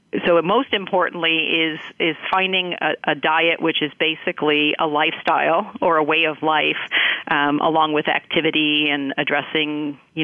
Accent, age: American, 50-69